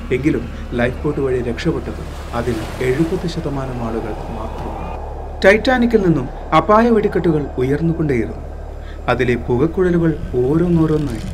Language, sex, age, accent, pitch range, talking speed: Malayalam, male, 30-49, native, 110-175 Hz, 95 wpm